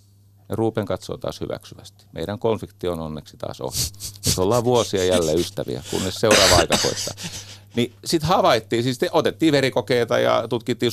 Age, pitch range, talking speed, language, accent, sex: 40-59, 100-120 Hz, 155 wpm, Finnish, native, male